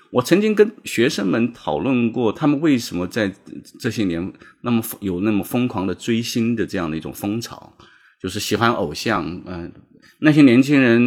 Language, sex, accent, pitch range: Chinese, male, native, 95-130 Hz